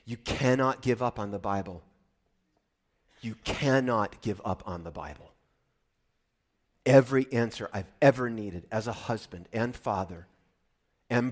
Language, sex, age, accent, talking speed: English, male, 40-59, American, 135 wpm